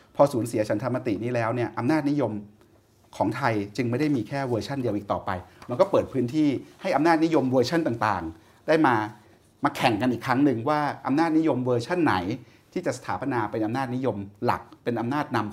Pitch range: 110-140 Hz